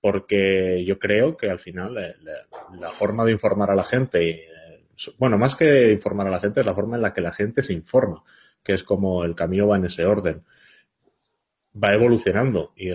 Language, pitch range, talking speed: Spanish, 95-125 Hz, 205 wpm